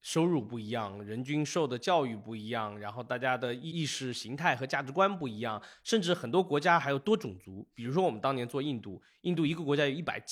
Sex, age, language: male, 20-39, Chinese